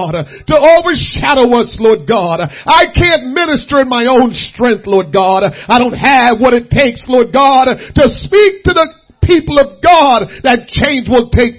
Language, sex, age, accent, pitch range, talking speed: English, male, 40-59, American, 245-315 Hz, 170 wpm